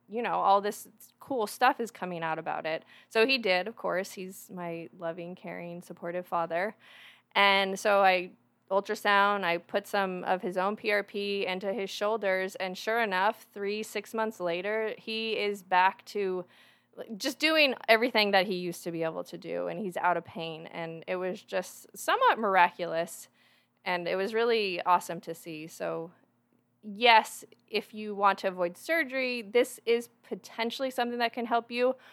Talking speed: 170 wpm